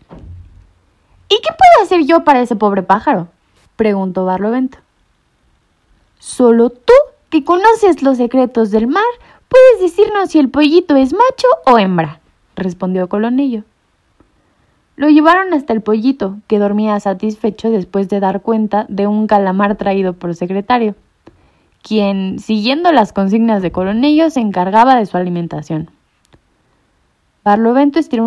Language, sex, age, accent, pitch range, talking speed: Spanish, female, 20-39, Mexican, 195-275 Hz, 130 wpm